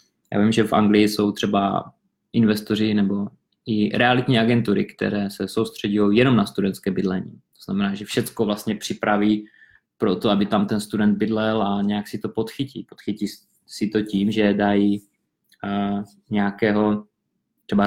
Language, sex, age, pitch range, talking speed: Czech, male, 20-39, 100-115 Hz, 155 wpm